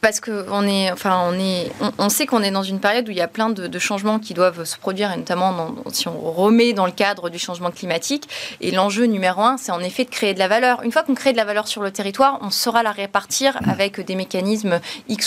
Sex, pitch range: female, 185-230 Hz